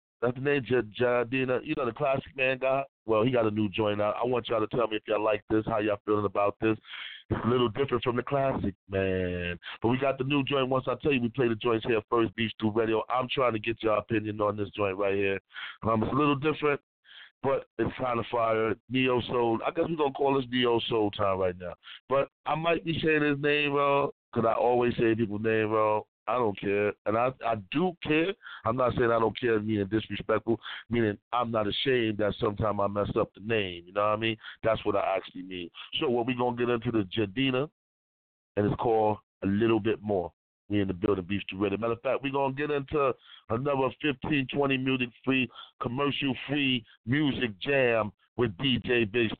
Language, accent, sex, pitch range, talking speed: English, American, male, 105-130 Hz, 225 wpm